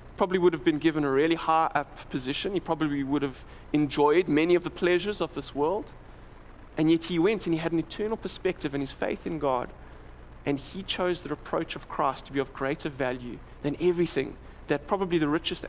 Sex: male